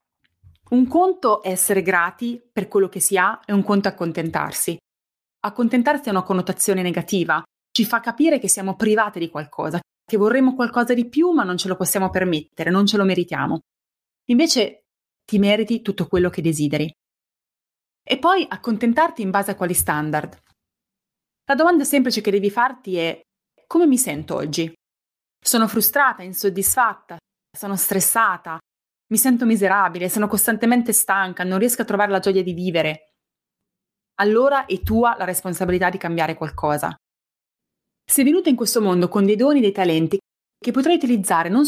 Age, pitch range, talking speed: 20-39, 175-230 Hz, 160 wpm